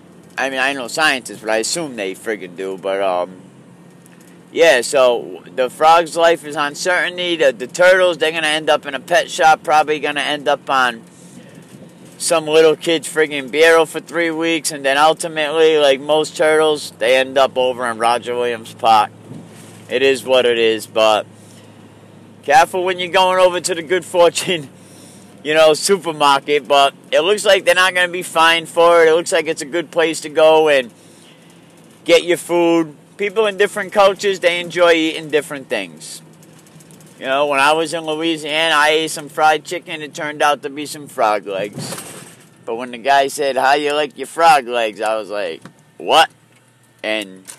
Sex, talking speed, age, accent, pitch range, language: male, 185 wpm, 40-59, American, 130-170 Hz, English